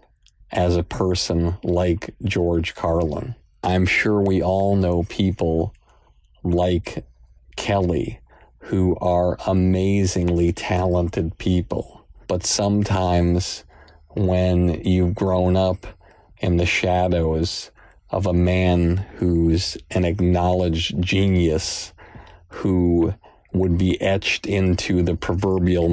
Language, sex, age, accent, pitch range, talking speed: English, male, 50-69, American, 85-95 Hz, 95 wpm